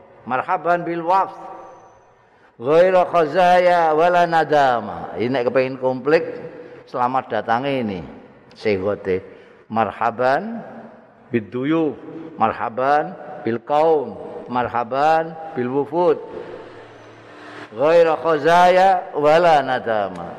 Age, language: 50-69, Indonesian